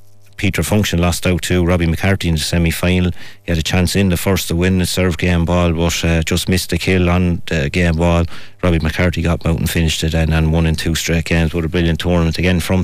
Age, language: 30-49, English